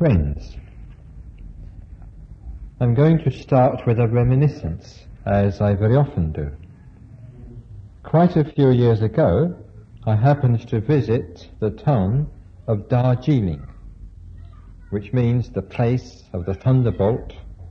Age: 60-79